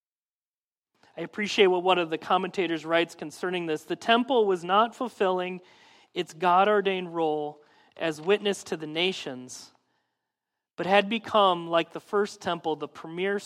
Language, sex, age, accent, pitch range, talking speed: English, male, 40-59, American, 155-200 Hz, 145 wpm